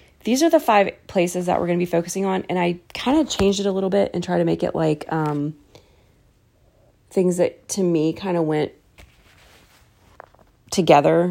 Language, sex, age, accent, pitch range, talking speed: English, female, 30-49, American, 150-205 Hz, 190 wpm